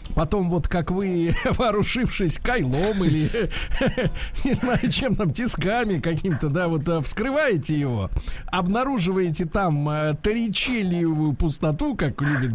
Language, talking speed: Russian, 110 wpm